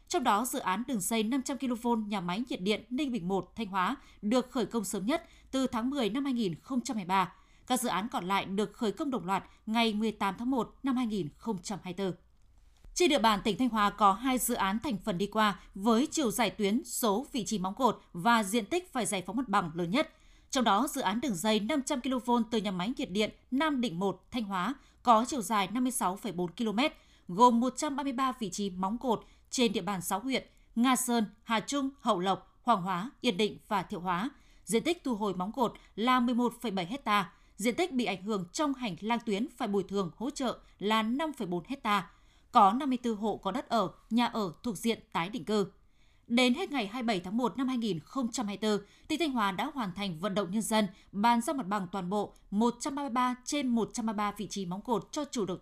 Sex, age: female, 20-39